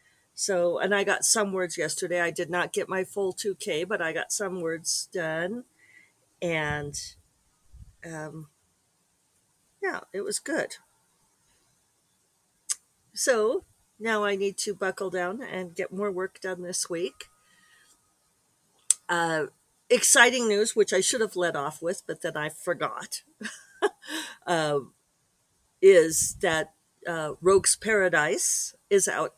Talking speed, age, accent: 125 wpm, 50-69, American